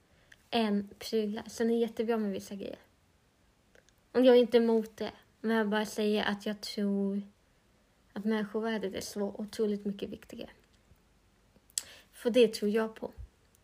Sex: female